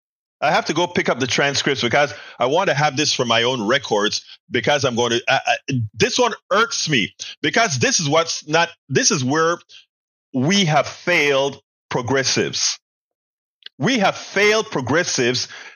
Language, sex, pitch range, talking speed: English, male, 150-205 Hz, 165 wpm